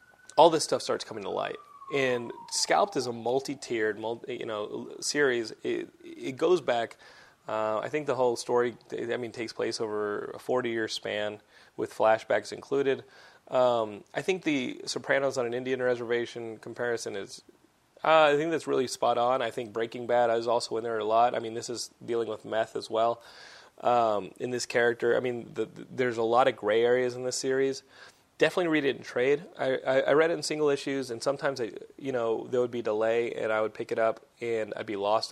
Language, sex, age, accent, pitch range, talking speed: English, male, 30-49, American, 115-150 Hz, 210 wpm